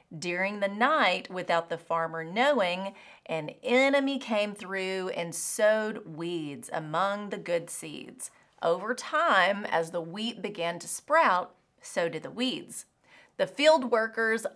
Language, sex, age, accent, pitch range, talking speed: English, female, 30-49, American, 175-250 Hz, 135 wpm